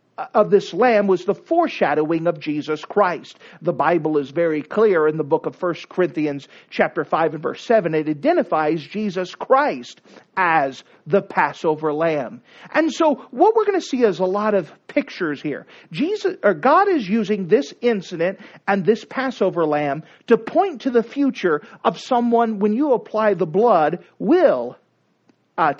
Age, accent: 50-69, American